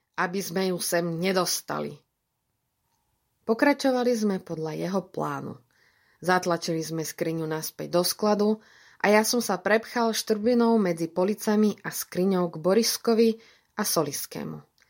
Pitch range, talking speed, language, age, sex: 170-215 Hz, 120 wpm, Slovak, 20-39, female